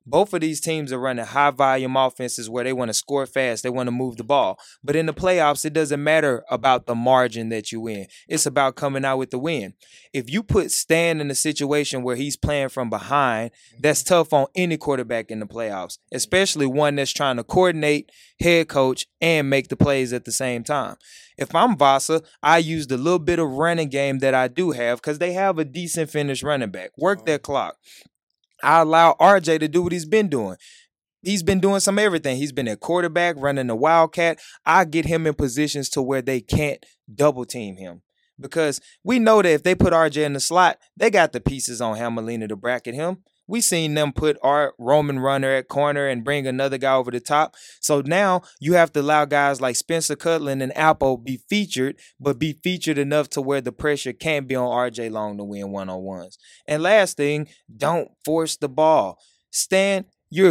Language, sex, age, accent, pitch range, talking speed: English, male, 20-39, American, 130-165 Hz, 210 wpm